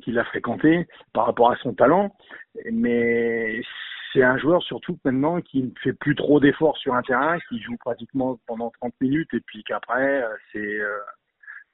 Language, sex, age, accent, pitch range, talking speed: French, male, 50-69, French, 115-135 Hz, 175 wpm